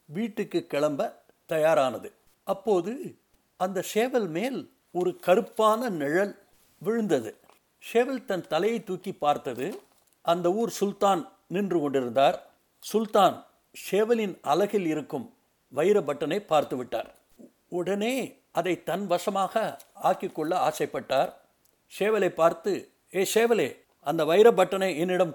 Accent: native